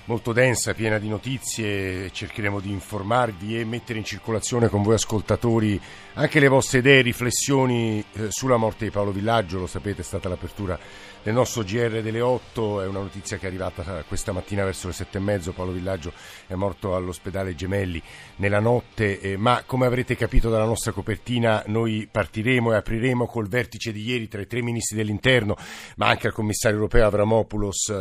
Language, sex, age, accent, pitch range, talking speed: Italian, male, 50-69, native, 100-120 Hz, 175 wpm